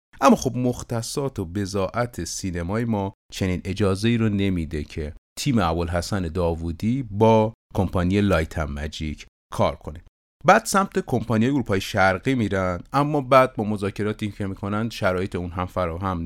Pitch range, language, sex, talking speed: 95-125 Hz, Persian, male, 150 wpm